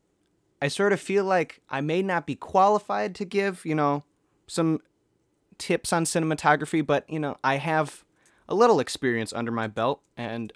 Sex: male